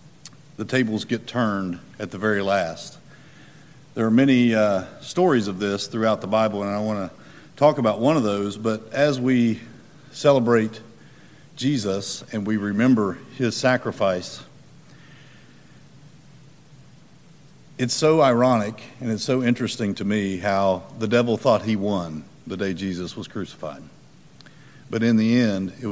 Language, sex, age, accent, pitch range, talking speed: English, male, 50-69, American, 100-140 Hz, 140 wpm